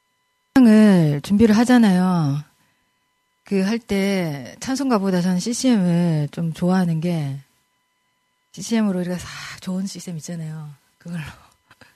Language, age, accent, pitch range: Korean, 30-49, native, 180-260 Hz